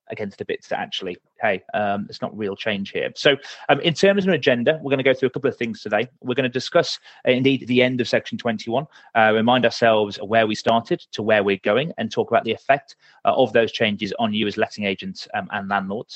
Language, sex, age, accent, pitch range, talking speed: English, male, 30-49, British, 110-160 Hz, 255 wpm